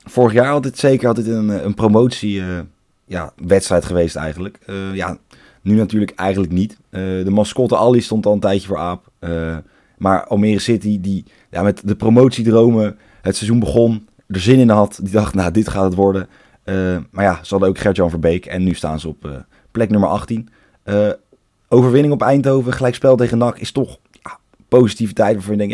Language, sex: Dutch, male